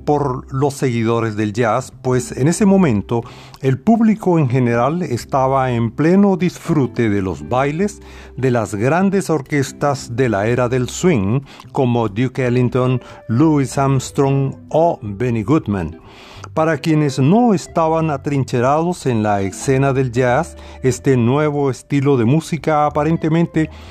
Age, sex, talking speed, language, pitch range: 40-59, male, 135 wpm, Spanish, 120-155 Hz